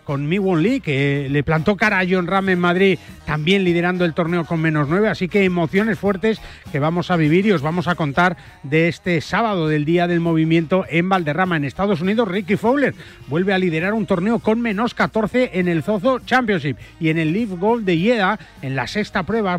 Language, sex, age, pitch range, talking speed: Spanish, male, 40-59, 155-200 Hz, 210 wpm